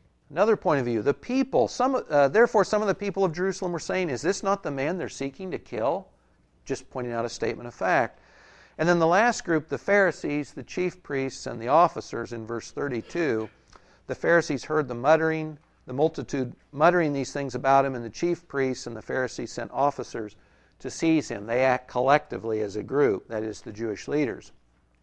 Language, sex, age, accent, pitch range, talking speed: English, male, 60-79, American, 120-180 Hz, 195 wpm